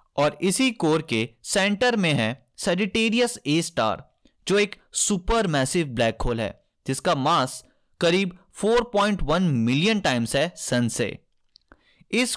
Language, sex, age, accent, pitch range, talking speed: Hindi, male, 20-39, native, 130-200 Hz, 130 wpm